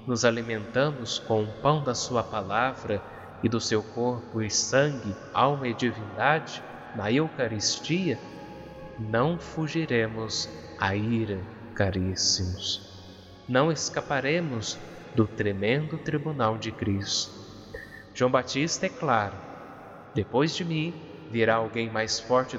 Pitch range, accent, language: 110-140 Hz, Brazilian, Portuguese